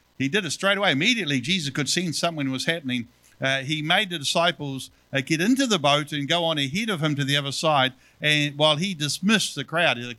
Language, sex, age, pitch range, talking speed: English, male, 50-69, 140-175 Hz, 235 wpm